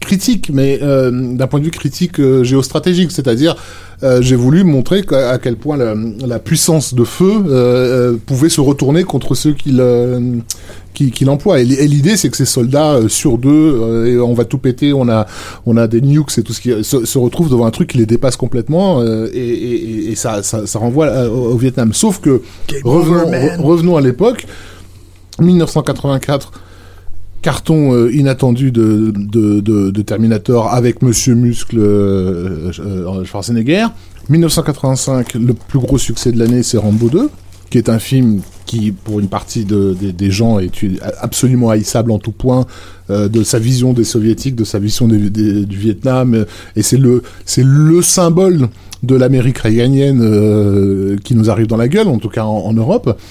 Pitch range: 105-135 Hz